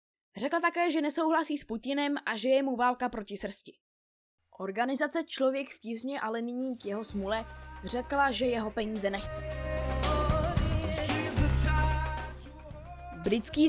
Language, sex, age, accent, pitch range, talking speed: Czech, female, 20-39, native, 225-290 Hz, 125 wpm